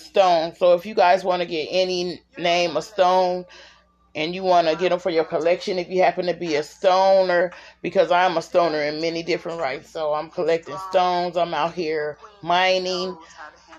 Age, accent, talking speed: 30-49, American, 185 wpm